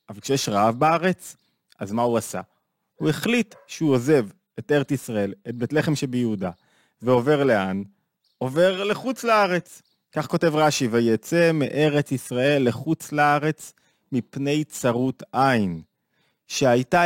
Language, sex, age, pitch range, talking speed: Hebrew, male, 30-49, 125-170 Hz, 125 wpm